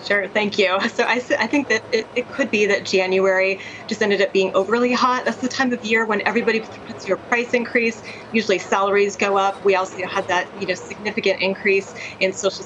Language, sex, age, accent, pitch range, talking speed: English, female, 30-49, American, 190-230 Hz, 220 wpm